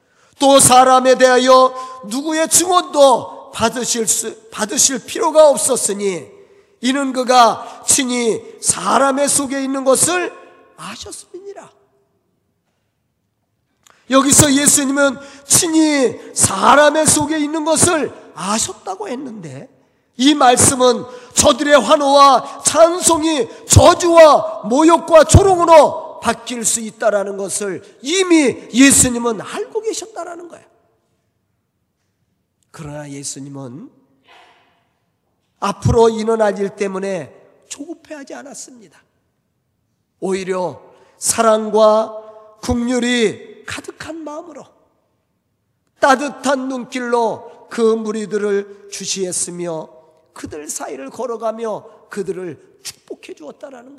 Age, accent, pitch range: 40-59, native, 215-300 Hz